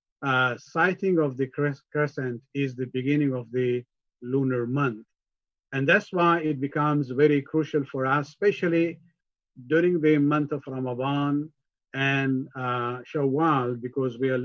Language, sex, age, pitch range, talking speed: English, male, 50-69, 130-160 Hz, 140 wpm